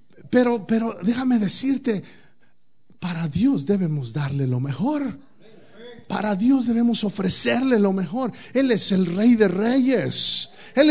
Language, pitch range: Spanish, 125-205 Hz